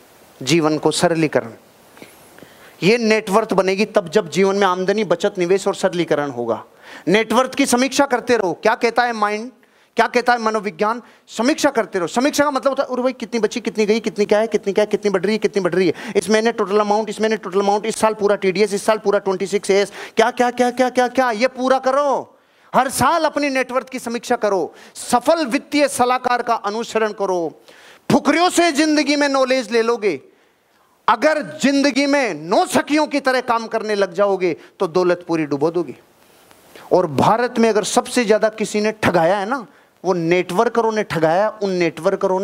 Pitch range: 180-240 Hz